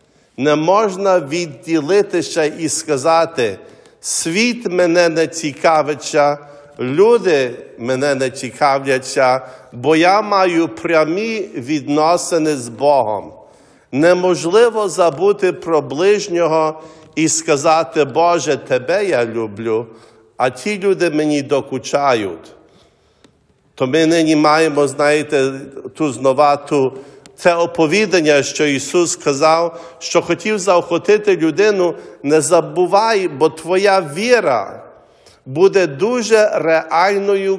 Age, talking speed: 50-69, 95 wpm